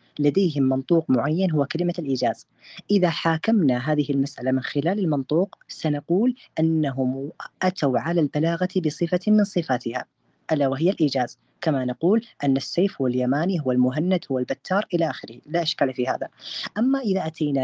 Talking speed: 145 wpm